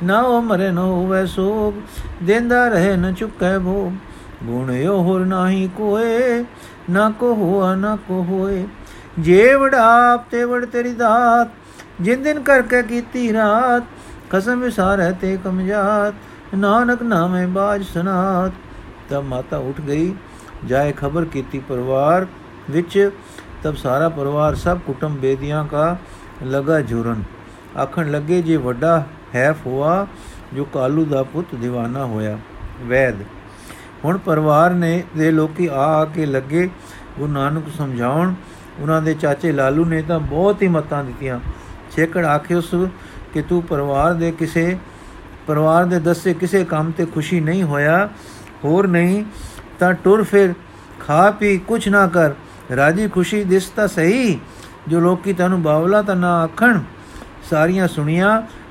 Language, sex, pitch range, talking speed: Punjabi, male, 145-195 Hz, 135 wpm